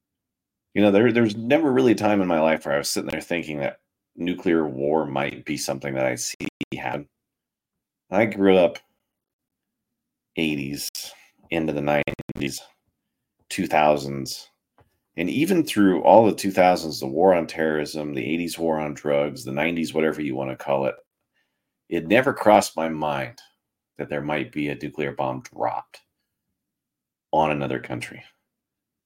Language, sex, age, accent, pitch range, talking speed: English, male, 40-59, American, 75-95 Hz, 155 wpm